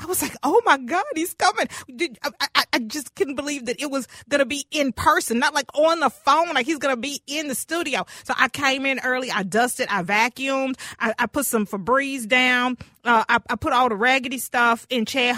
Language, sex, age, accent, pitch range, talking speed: English, female, 40-59, American, 220-265 Hz, 235 wpm